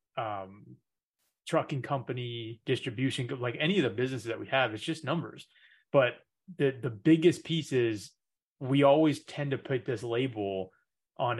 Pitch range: 115-140 Hz